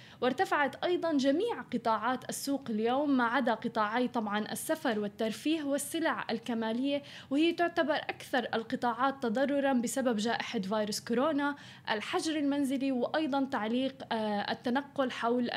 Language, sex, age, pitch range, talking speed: Arabic, female, 10-29, 230-280 Hz, 110 wpm